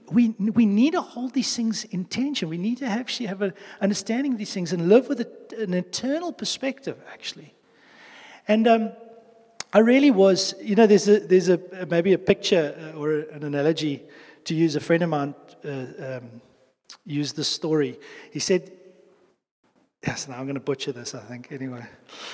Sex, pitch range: male, 160-240 Hz